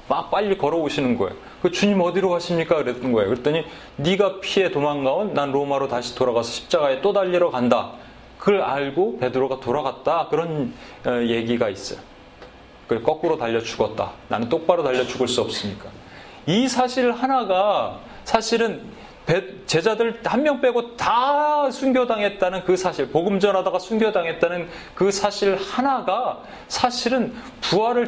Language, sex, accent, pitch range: Korean, male, native, 140-215 Hz